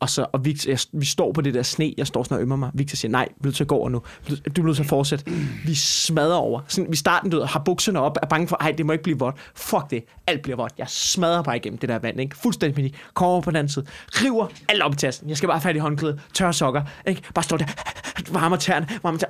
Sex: male